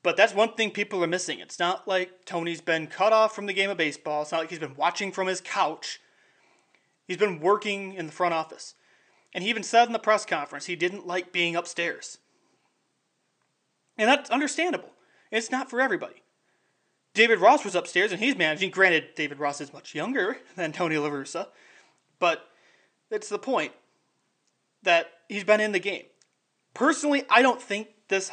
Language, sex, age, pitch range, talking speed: English, male, 30-49, 175-225 Hz, 185 wpm